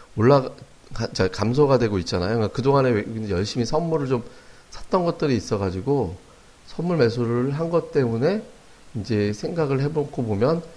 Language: Korean